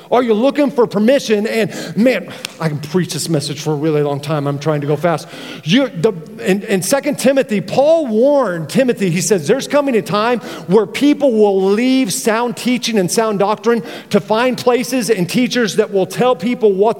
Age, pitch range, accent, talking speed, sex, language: 40-59, 195-255 Hz, American, 190 wpm, male, English